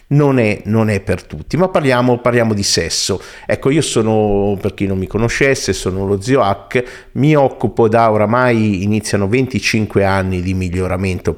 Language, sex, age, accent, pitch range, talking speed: Italian, male, 50-69, native, 95-125 Hz, 170 wpm